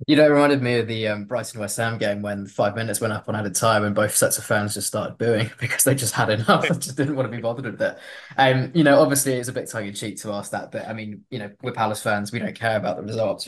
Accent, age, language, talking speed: British, 20-39, English, 300 wpm